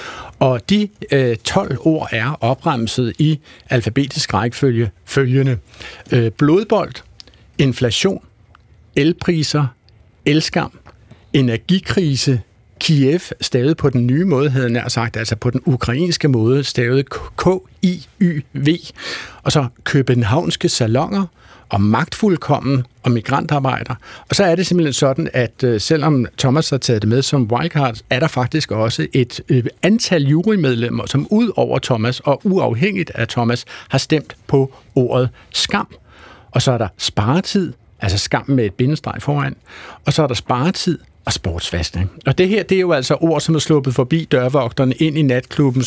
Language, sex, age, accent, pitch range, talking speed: Danish, male, 60-79, native, 120-155 Hz, 140 wpm